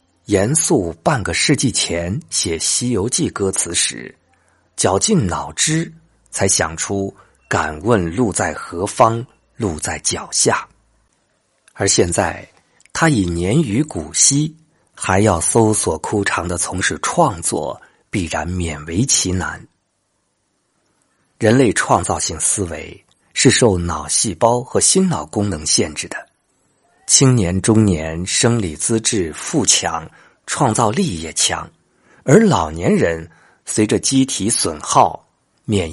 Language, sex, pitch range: Chinese, male, 85-115 Hz